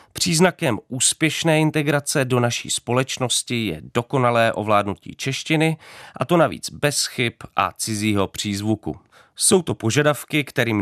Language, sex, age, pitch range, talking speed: Czech, male, 30-49, 100-135 Hz, 120 wpm